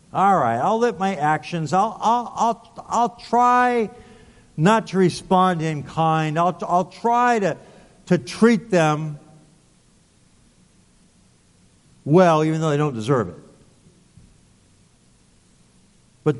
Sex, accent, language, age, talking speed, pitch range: male, American, English, 50-69, 115 wpm, 145-200 Hz